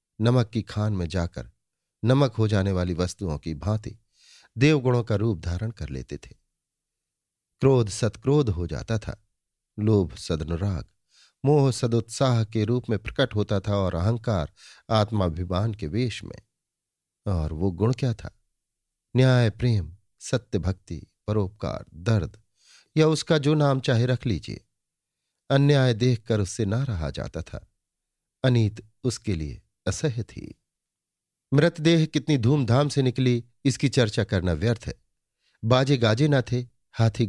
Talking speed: 140 wpm